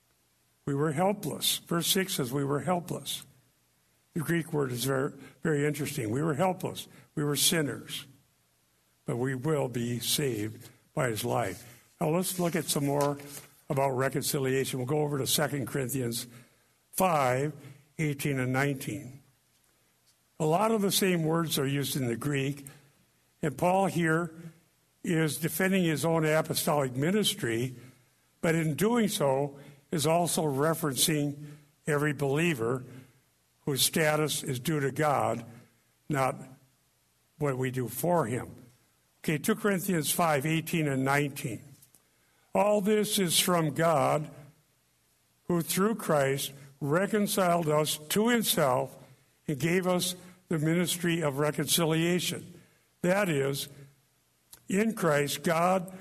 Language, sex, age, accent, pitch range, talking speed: English, male, 60-79, American, 130-165 Hz, 130 wpm